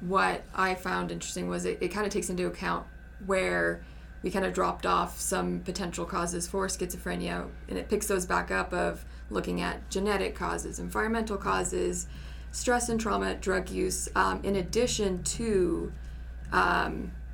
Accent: American